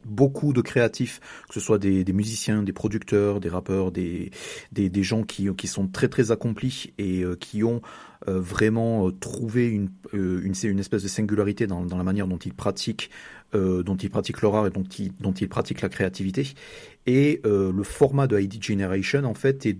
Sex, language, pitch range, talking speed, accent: male, French, 95-125 Hz, 185 wpm, French